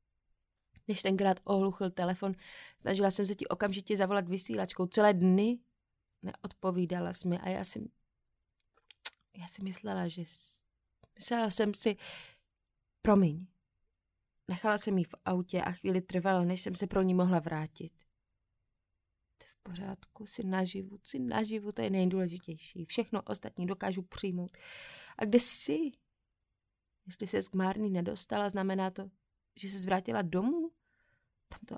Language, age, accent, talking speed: Czech, 20-39, native, 140 wpm